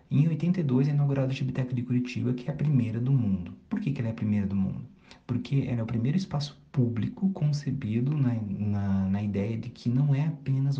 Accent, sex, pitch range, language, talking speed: Brazilian, male, 105-135 Hz, Portuguese, 220 wpm